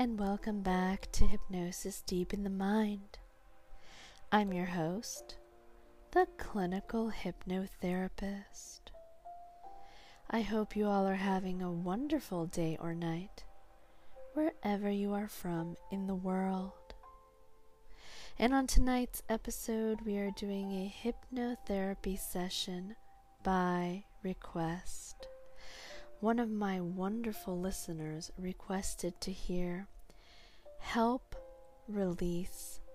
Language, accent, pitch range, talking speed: English, American, 180-220 Hz, 100 wpm